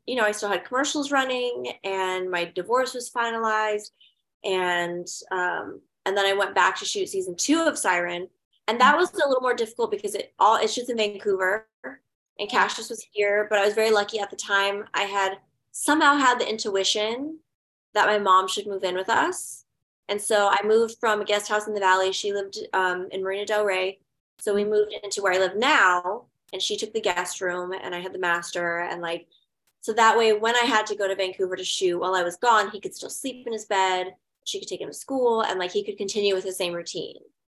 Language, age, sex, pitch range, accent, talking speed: English, 20-39, female, 185-225 Hz, American, 225 wpm